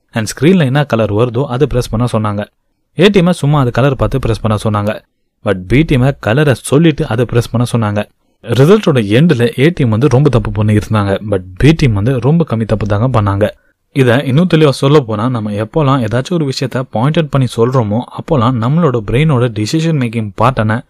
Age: 20-39